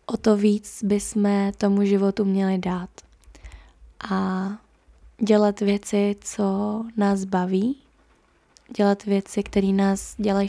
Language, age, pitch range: Czech, 20-39, 195-210 Hz